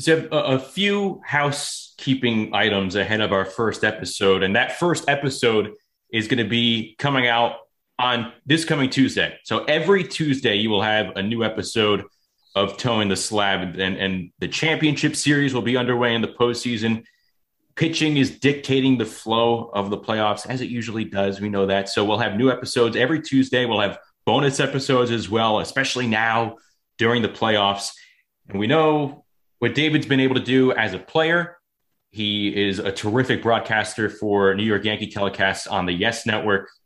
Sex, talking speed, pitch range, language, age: male, 175 wpm, 105-135 Hz, English, 30-49